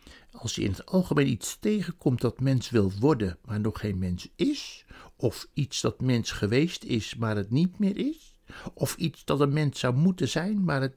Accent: Dutch